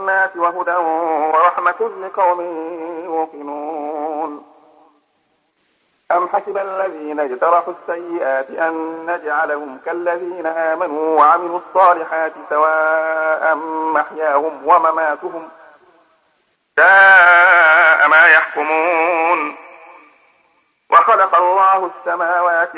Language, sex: Arabic, male